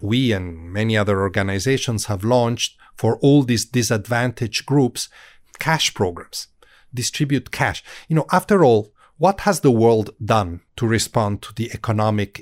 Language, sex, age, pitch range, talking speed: English, male, 40-59, 115-155 Hz, 145 wpm